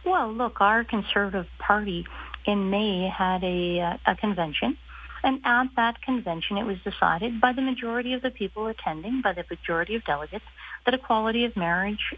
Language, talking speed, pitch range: English, 170 wpm, 175-230 Hz